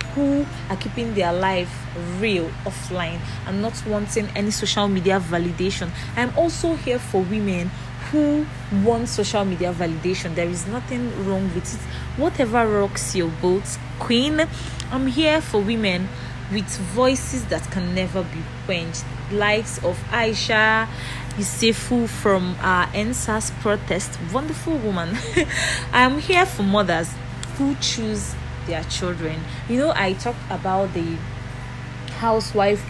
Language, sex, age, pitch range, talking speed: English, female, 20-39, 125-210 Hz, 130 wpm